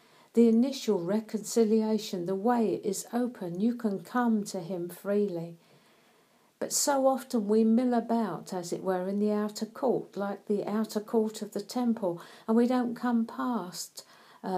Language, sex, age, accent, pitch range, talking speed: English, female, 50-69, British, 185-225 Hz, 160 wpm